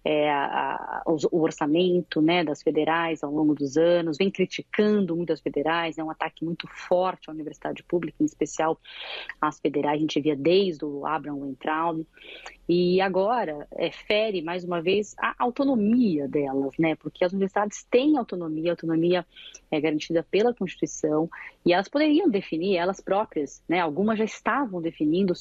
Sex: female